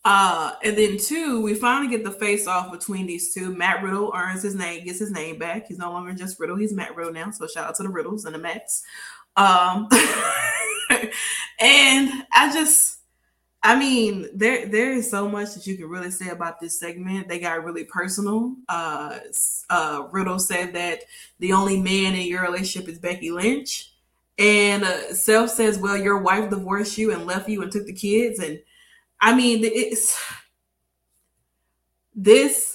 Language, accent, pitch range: English, American, 175-215 Hz